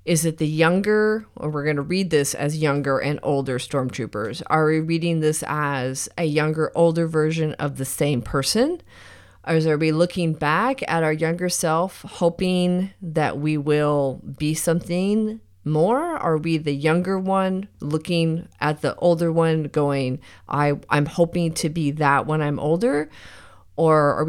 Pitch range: 145-175 Hz